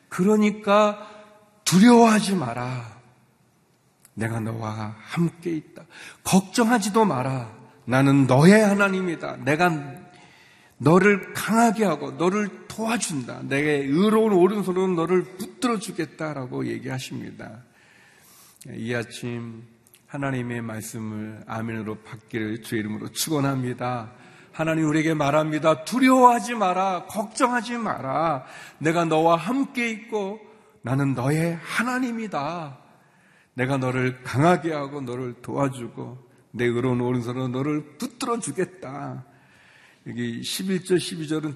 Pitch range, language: 125-200 Hz, Korean